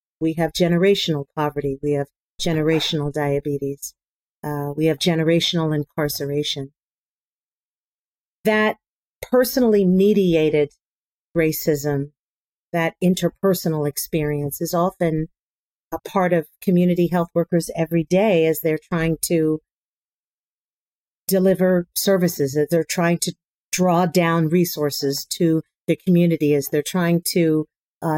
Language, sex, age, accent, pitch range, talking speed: English, female, 40-59, American, 150-180 Hz, 110 wpm